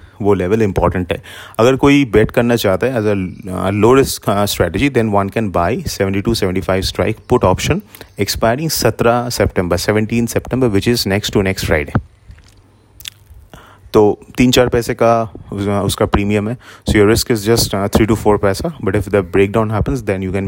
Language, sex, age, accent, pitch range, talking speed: English, male, 30-49, Indian, 95-110 Hz, 145 wpm